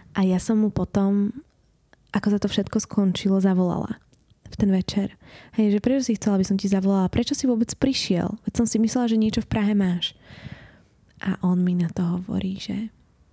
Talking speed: 195 wpm